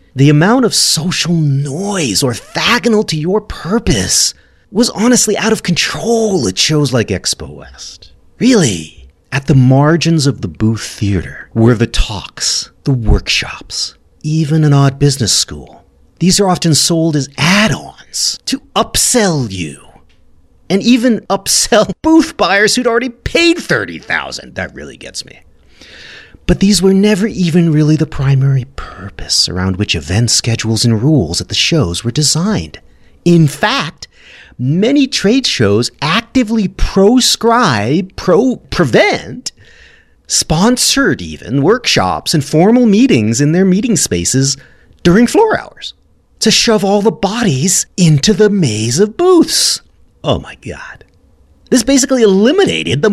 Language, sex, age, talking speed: English, male, 30-49, 130 wpm